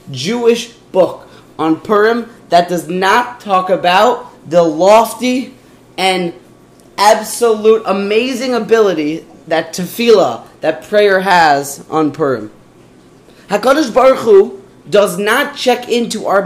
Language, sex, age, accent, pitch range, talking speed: English, male, 20-39, American, 175-235 Hz, 110 wpm